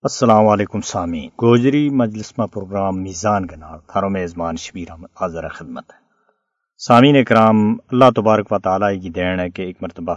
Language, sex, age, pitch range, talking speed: Urdu, male, 50-69, 95-120 Hz, 160 wpm